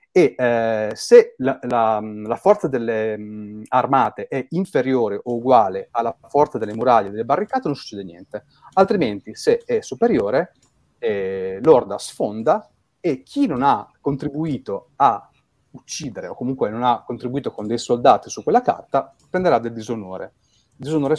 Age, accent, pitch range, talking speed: 30-49, native, 110-155 Hz, 150 wpm